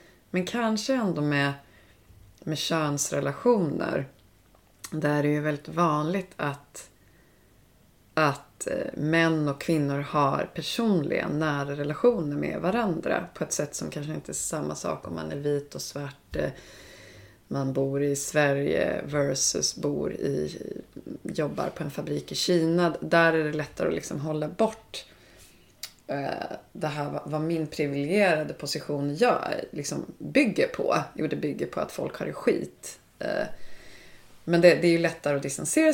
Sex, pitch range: female, 145-180 Hz